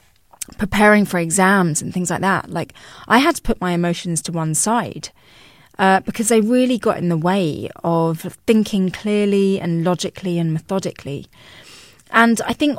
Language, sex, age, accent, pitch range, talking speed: English, female, 30-49, British, 170-210 Hz, 165 wpm